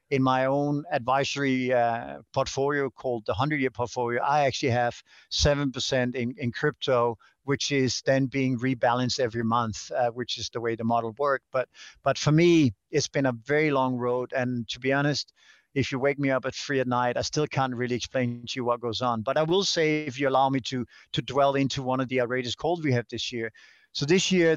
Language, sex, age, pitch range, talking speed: English, male, 50-69, 125-150 Hz, 215 wpm